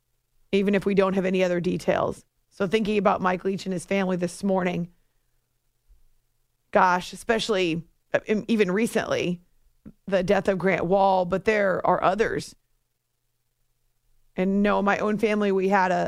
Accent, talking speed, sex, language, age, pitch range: American, 145 wpm, female, English, 30-49, 185-215 Hz